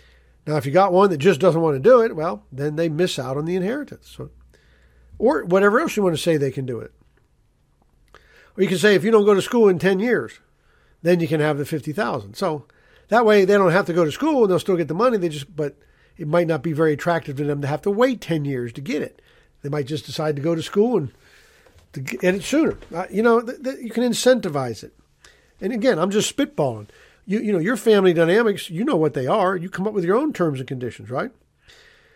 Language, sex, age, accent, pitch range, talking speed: English, male, 50-69, American, 150-210 Hz, 250 wpm